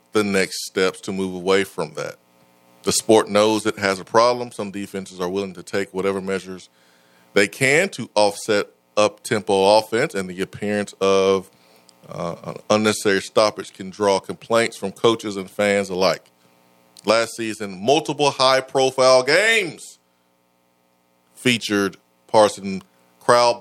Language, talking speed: English, 135 wpm